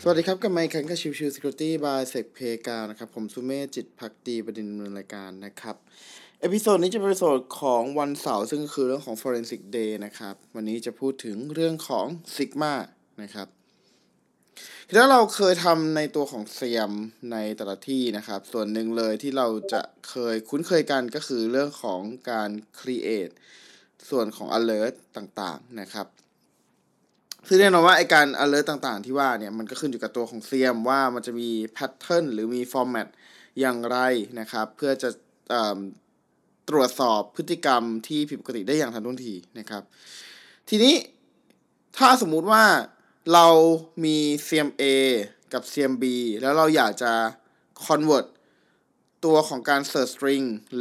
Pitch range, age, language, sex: 115-150 Hz, 20-39, Thai, male